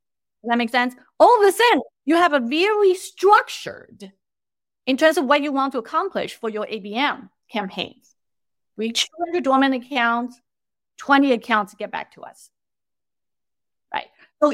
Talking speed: 150 wpm